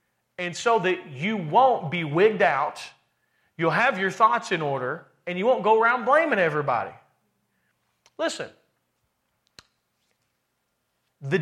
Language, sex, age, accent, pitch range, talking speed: English, male, 40-59, American, 170-225 Hz, 120 wpm